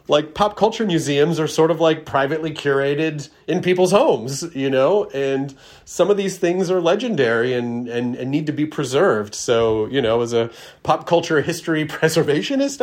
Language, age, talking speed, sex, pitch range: English, 40-59, 185 wpm, male, 120-150 Hz